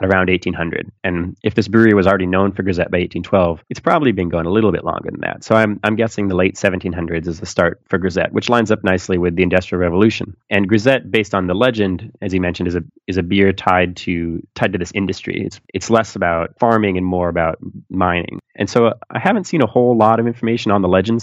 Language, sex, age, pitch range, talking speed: English, male, 30-49, 90-105 Hz, 240 wpm